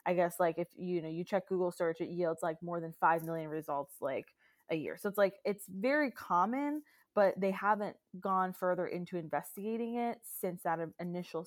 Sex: female